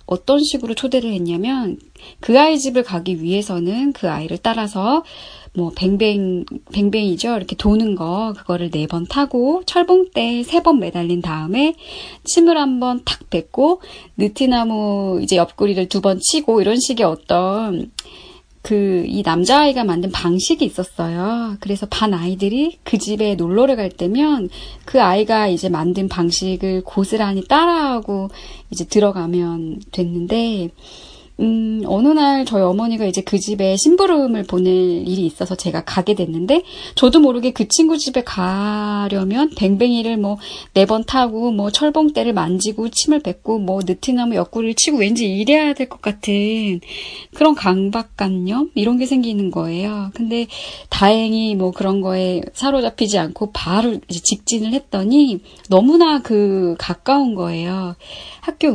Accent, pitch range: native, 185-260 Hz